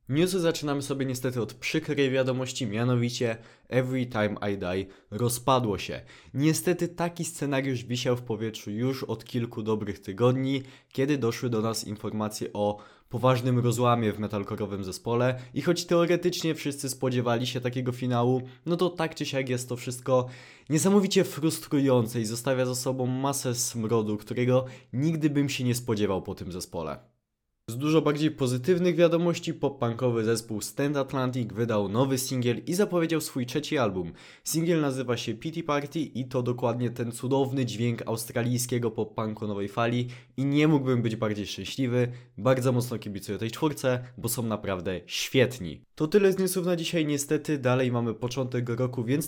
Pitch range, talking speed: 115-145 Hz, 155 wpm